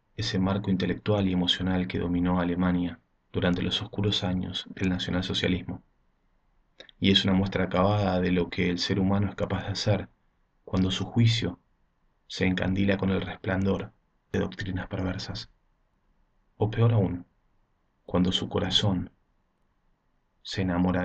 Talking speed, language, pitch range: 135 wpm, Spanish, 90-100 Hz